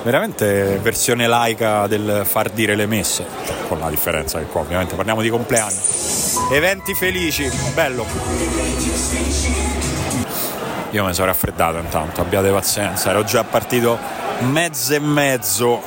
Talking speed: 125 wpm